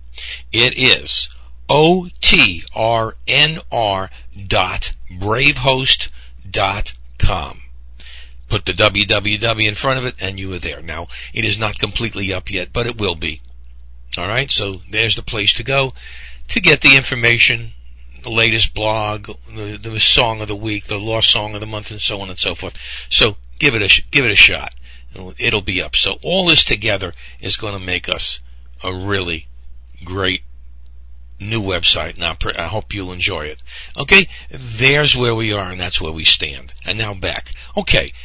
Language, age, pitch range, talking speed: English, 60-79, 70-110 Hz, 175 wpm